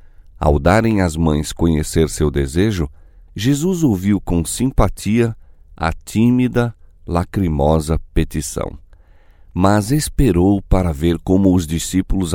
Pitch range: 80-105 Hz